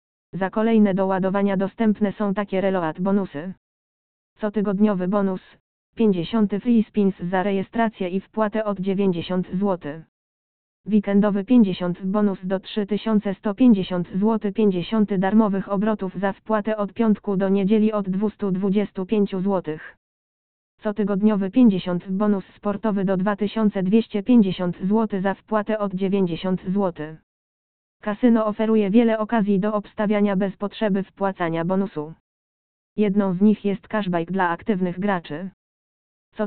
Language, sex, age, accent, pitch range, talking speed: Polish, female, 20-39, native, 190-215 Hz, 115 wpm